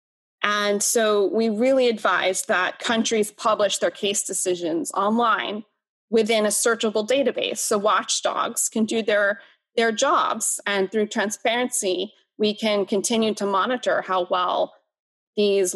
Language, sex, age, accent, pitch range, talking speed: English, female, 20-39, American, 195-230 Hz, 130 wpm